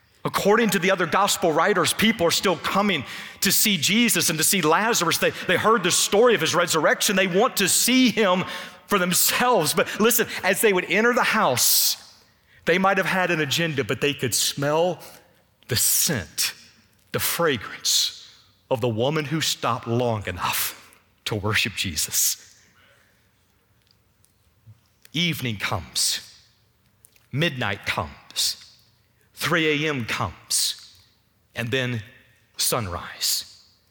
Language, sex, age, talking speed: English, male, 40-59, 130 wpm